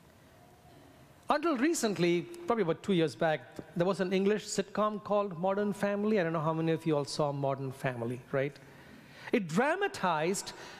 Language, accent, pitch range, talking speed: English, Indian, 160-260 Hz, 160 wpm